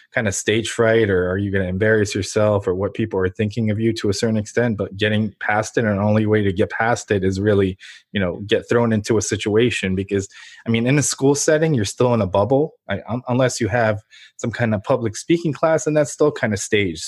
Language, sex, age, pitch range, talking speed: English, male, 20-39, 105-125 Hz, 250 wpm